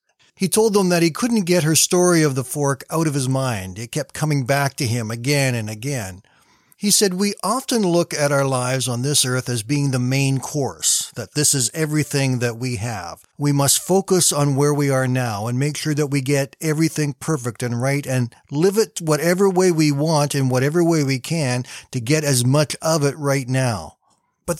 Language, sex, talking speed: English, male, 210 wpm